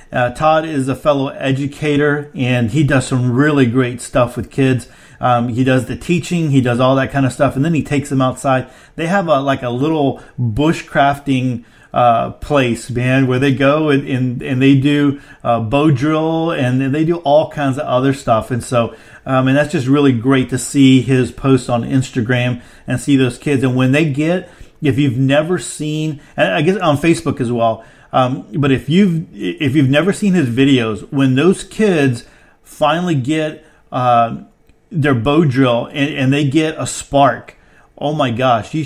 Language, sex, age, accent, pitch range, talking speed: English, male, 40-59, American, 125-150 Hz, 190 wpm